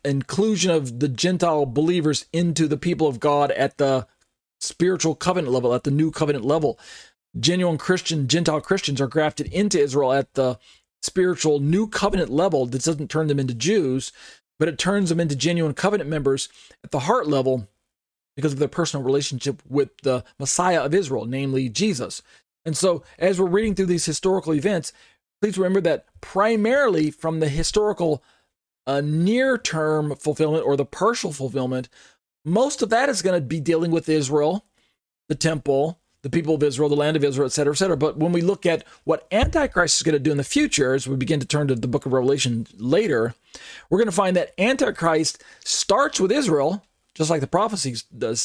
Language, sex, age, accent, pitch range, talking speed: English, male, 40-59, American, 140-180 Hz, 185 wpm